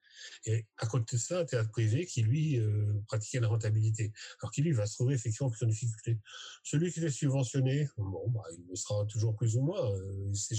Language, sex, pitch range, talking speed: French, male, 110-130 Hz, 230 wpm